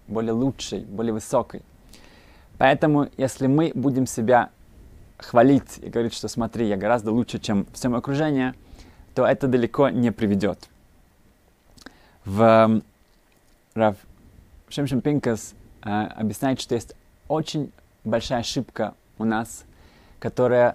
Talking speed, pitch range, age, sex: 115 wpm, 105-125 Hz, 20-39, male